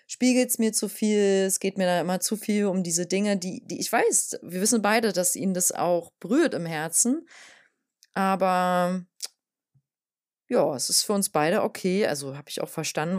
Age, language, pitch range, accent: 30-49, German, 170-220 Hz, German